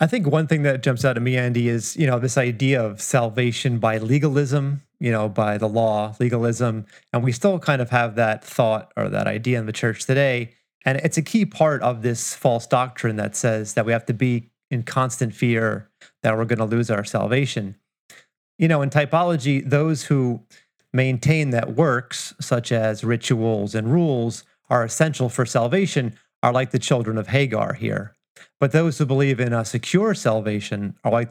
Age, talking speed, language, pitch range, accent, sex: 30-49, 195 wpm, English, 115-140 Hz, American, male